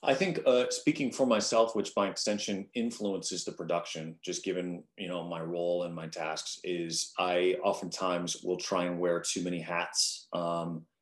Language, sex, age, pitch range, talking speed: English, male, 30-49, 85-100 Hz, 175 wpm